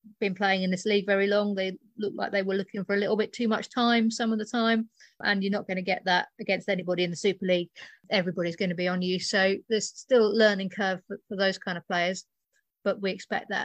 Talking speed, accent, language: 260 wpm, British, English